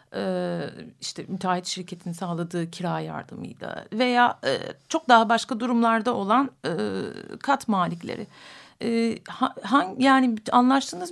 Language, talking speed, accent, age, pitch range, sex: Turkish, 85 wpm, native, 50-69, 205-265 Hz, female